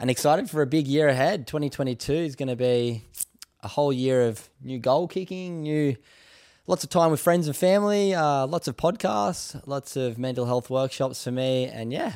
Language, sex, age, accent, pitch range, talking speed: English, male, 10-29, Australian, 110-140 Hz, 200 wpm